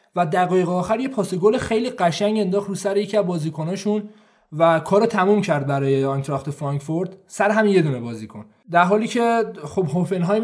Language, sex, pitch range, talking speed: Persian, male, 160-195 Hz, 185 wpm